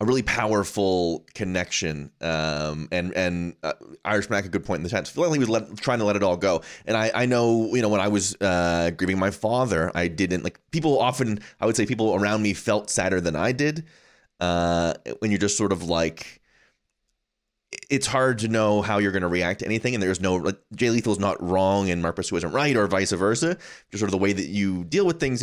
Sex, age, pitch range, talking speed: male, 30-49, 85-110 Hz, 230 wpm